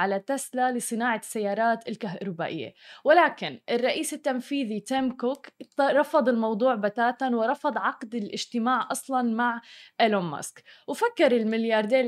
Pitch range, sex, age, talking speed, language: 225-270 Hz, female, 20-39, 110 wpm, Arabic